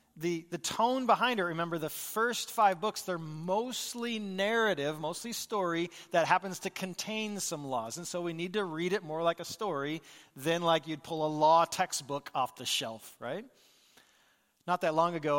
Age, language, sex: 40-59, English, male